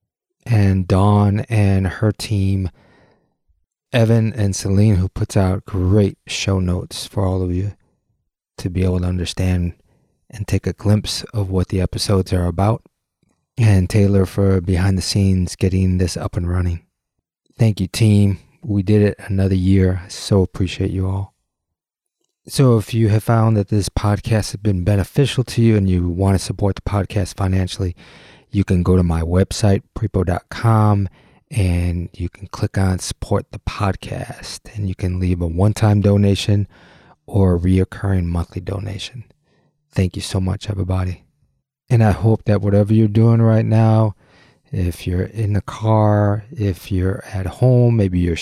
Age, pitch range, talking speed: 30-49, 95-110 Hz, 160 wpm